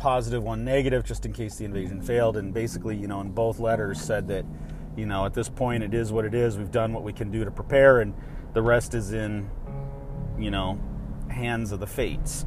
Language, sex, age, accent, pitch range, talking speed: English, male, 30-49, American, 95-125 Hz, 225 wpm